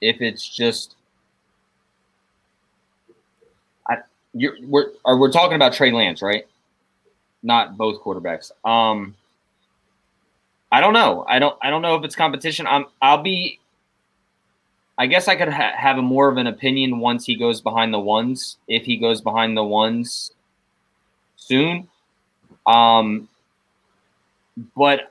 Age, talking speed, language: 20-39, 130 wpm, English